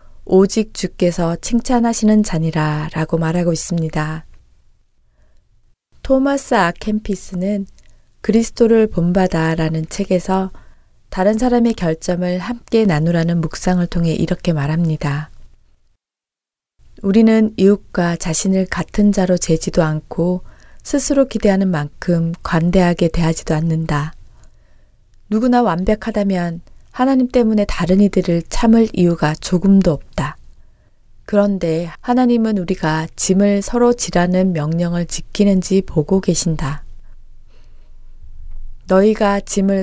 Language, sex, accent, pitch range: Korean, female, native, 160-210 Hz